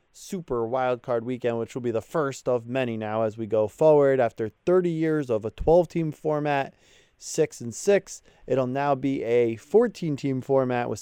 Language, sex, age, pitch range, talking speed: English, male, 20-39, 120-150 Hz, 185 wpm